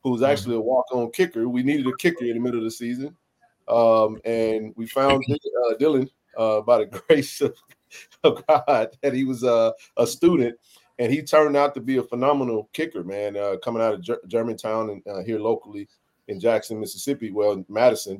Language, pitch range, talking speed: English, 115-150 Hz, 195 wpm